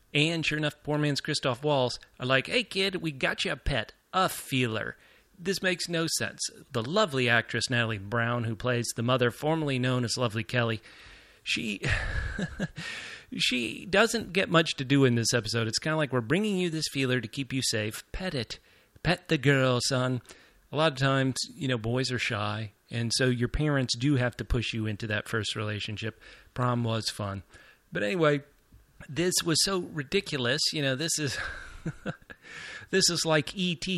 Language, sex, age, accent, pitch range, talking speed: English, male, 30-49, American, 120-155 Hz, 185 wpm